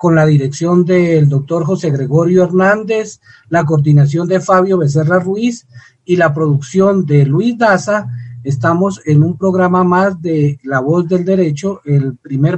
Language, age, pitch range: Spanish, 40-59, 145-185 Hz